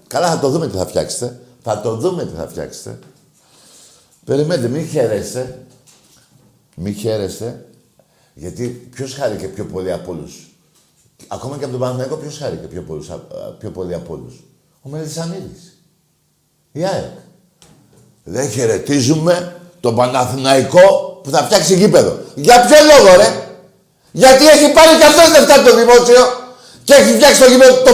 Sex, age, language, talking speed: male, 50-69, Greek, 130 wpm